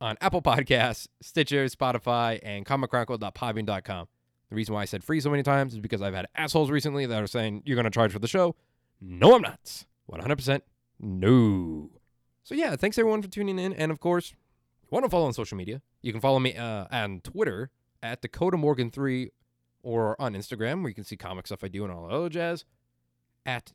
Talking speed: 205 wpm